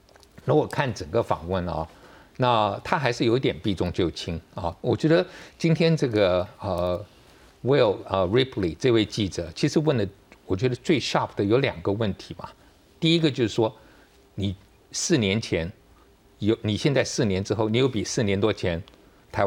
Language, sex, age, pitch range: Chinese, male, 60-79, 95-125 Hz